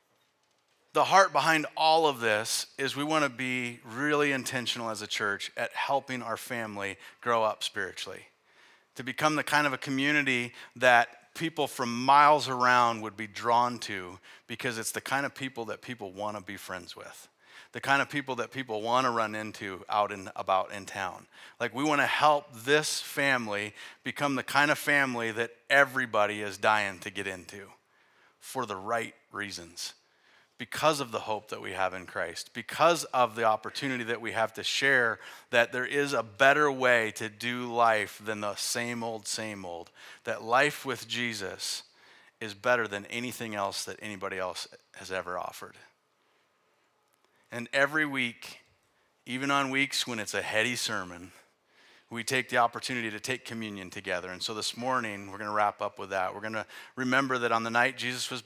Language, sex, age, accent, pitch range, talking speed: English, male, 40-59, American, 105-130 Hz, 180 wpm